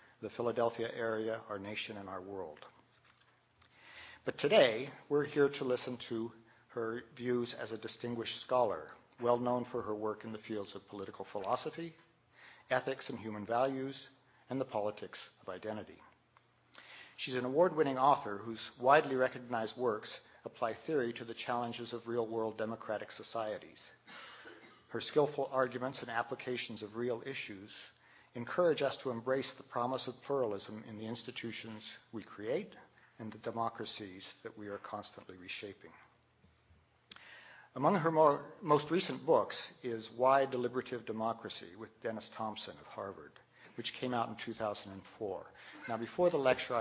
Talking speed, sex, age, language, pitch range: 140 wpm, male, 50-69, English, 110-130 Hz